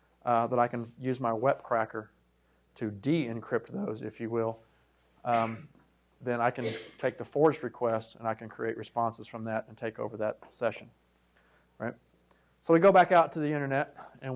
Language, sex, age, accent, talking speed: English, male, 40-59, American, 180 wpm